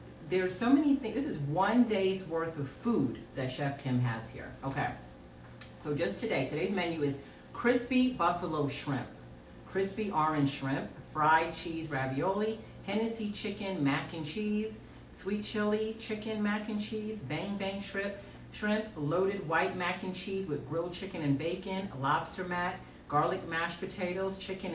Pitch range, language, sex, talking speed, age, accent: 165-200 Hz, English, female, 155 wpm, 40-59, American